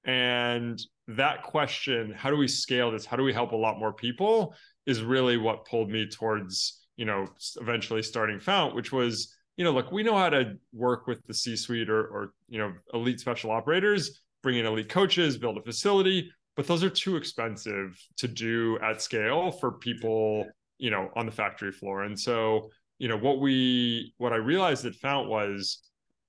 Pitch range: 115-140 Hz